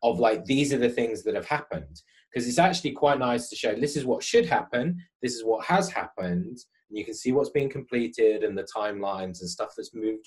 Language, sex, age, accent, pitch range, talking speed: English, male, 30-49, British, 105-170 Hz, 235 wpm